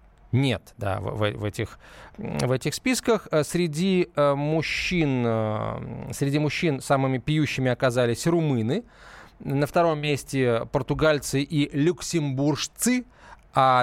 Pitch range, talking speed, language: 125-170 Hz, 100 wpm, Russian